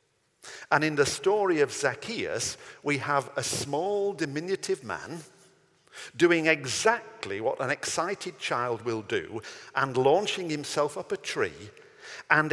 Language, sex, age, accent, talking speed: English, male, 50-69, British, 130 wpm